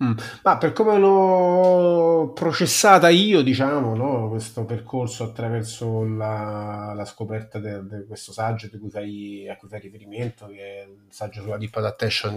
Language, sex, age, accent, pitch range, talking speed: Italian, male, 30-49, native, 110-135 Hz, 155 wpm